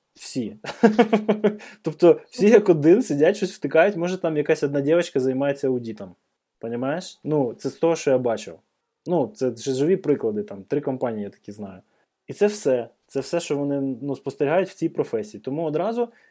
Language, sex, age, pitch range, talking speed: Ukrainian, male, 20-39, 130-165 Hz, 175 wpm